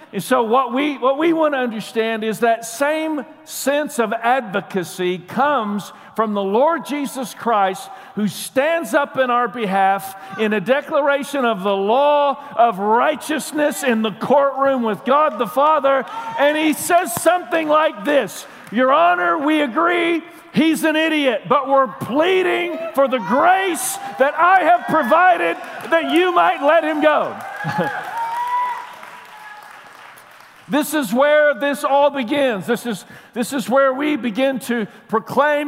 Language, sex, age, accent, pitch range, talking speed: English, male, 50-69, American, 205-300 Hz, 145 wpm